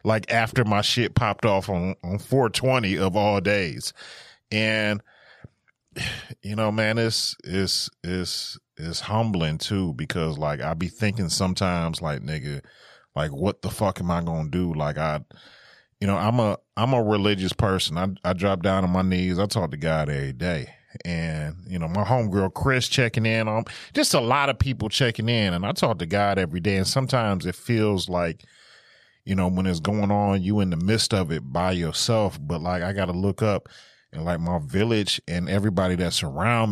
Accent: American